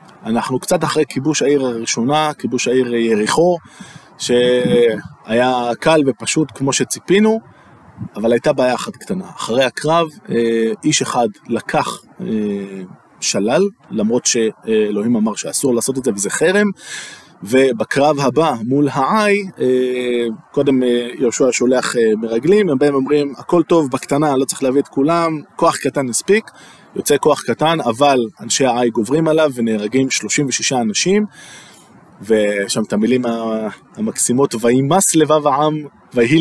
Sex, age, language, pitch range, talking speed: male, 20-39, Hebrew, 120-160 Hz, 125 wpm